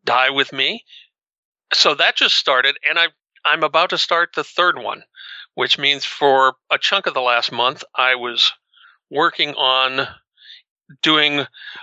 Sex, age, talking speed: male, 40-59, 150 wpm